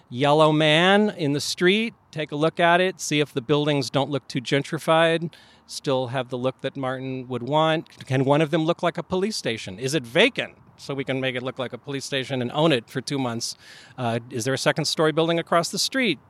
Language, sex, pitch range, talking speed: English, male, 125-165 Hz, 235 wpm